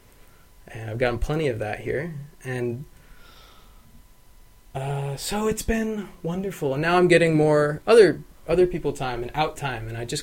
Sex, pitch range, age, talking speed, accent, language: male, 120-145 Hz, 20-39, 165 wpm, American, English